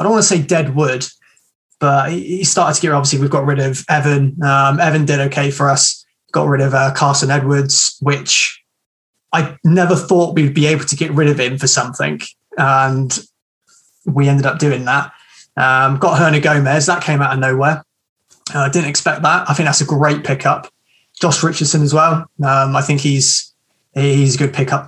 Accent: British